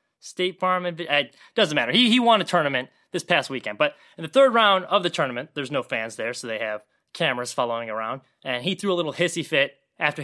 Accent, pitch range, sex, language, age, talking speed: American, 140-185 Hz, male, English, 20-39, 230 wpm